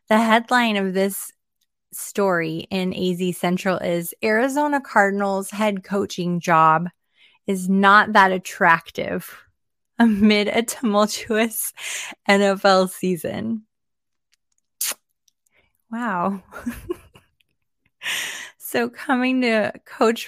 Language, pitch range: English, 175-215 Hz